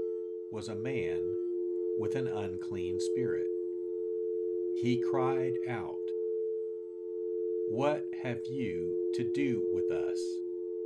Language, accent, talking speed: English, American, 95 wpm